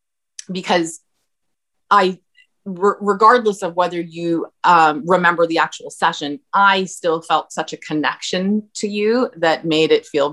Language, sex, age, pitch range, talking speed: English, female, 30-49, 155-190 Hz, 135 wpm